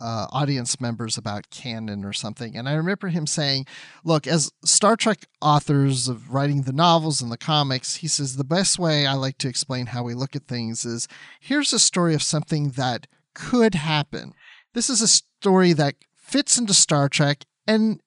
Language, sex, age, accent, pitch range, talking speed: English, male, 40-59, American, 125-165 Hz, 190 wpm